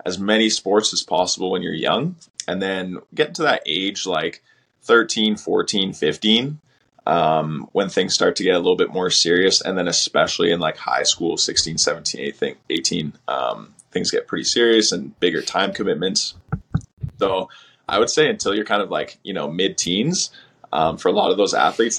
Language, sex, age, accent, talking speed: English, male, 20-39, American, 180 wpm